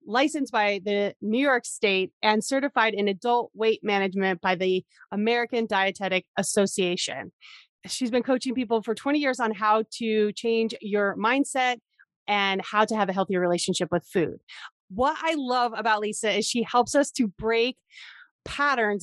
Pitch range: 185-230 Hz